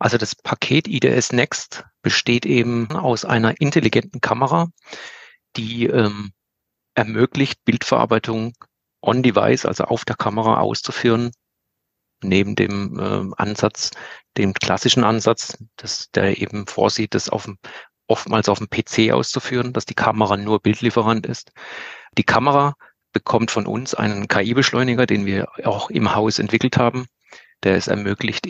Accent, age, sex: German, 40-59, male